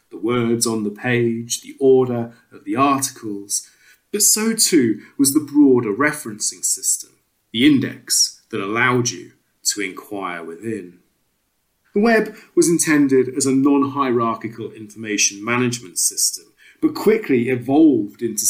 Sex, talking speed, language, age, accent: male, 130 wpm, English, 30-49, British